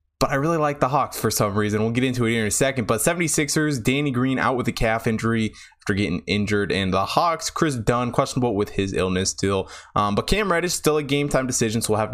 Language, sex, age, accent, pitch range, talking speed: English, male, 20-39, American, 105-135 Hz, 245 wpm